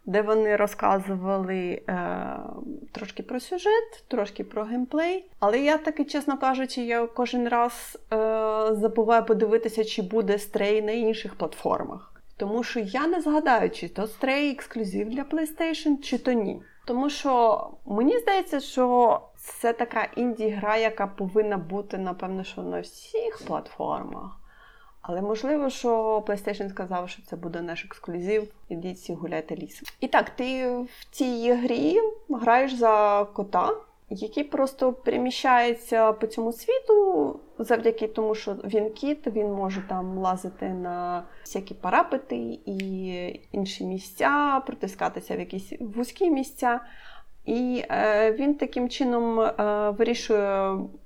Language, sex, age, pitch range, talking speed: Ukrainian, female, 30-49, 205-265 Hz, 130 wpm